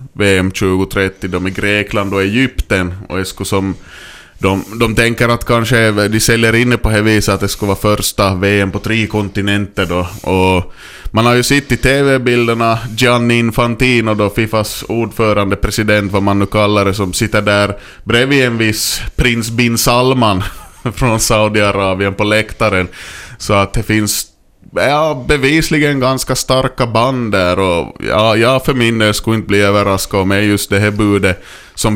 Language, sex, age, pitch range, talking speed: Swedish, male, 20-39, 95-115 Hz, 160 wpm